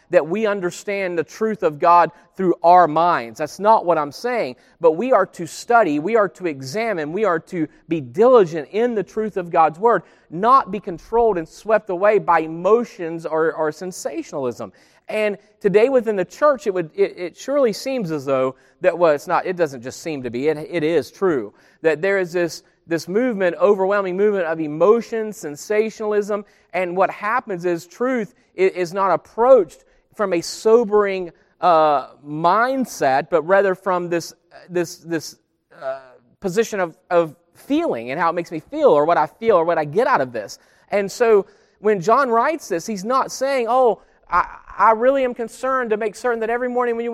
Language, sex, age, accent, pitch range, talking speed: English, male, 40-59, American, 170-240 Hz, 195 wpm